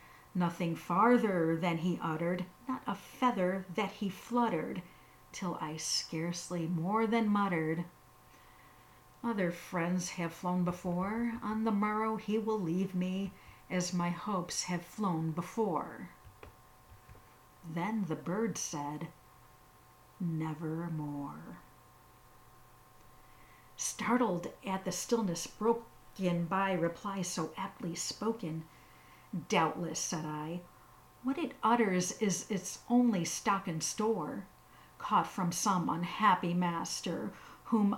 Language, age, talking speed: English, 50-69, 110 wpm